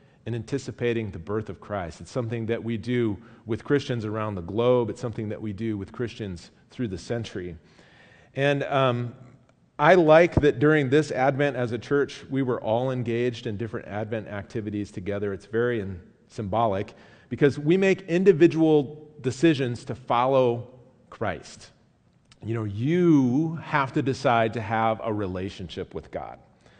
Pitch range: 110-140 Hz